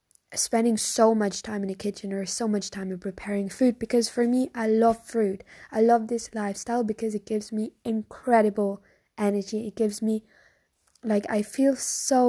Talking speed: 180 wpm